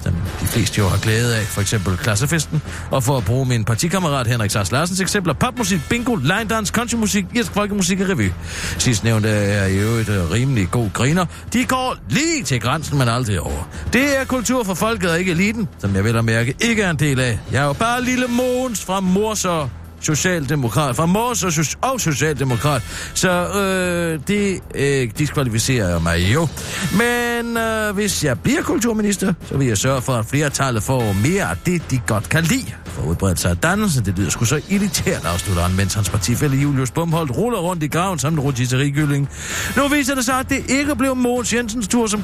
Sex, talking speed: male, 190 wpm